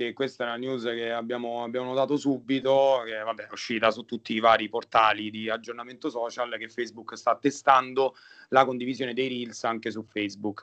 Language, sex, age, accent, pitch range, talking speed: Italian, male, 30-49, native, 110-130 Hz, 175 wpm